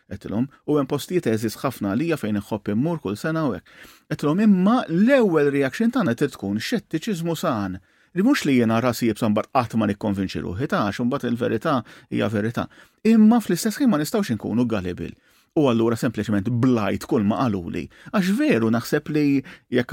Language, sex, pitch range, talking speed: English, male, 110-145 Hz, 175 wpm